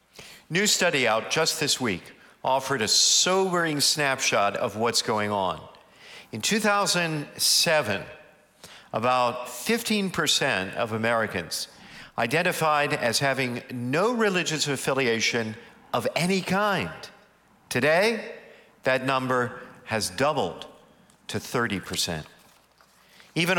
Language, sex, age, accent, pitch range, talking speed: English, male, 50-69, American, 125-170 Hz, 95 wpm